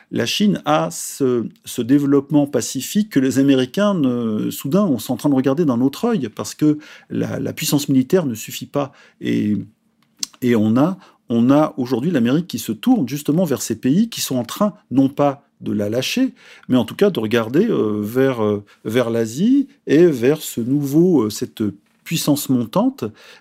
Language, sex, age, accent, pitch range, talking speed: French, male, 40-59, French, 115-155 Hz, 175 wpm